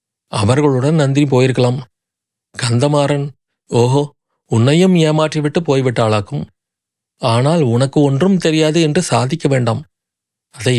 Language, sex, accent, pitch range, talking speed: Tamil, male, native, 125-155 Hz, 90 wpm